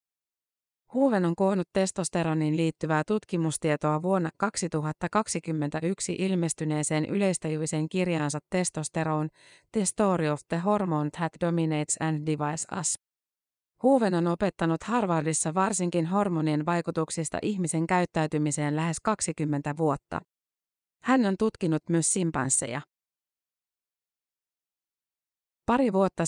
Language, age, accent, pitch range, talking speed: Finnish, 30-49, native, 155-185 Hz, 95 wpm